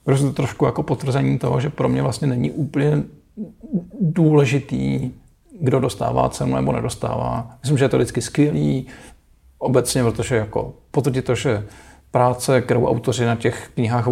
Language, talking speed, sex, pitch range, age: Czech, 140 wpm, male, 105-125 Hz, 40-59